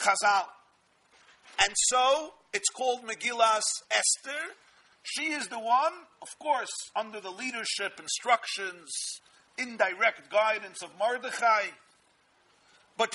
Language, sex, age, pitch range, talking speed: English, male, 50-69, 195-255 Hz, 100 wpm